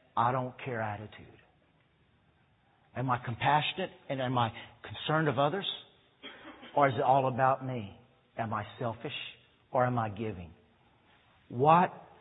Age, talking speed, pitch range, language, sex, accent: 50-69, 135 wpm, 120-150 Hz, English, male, American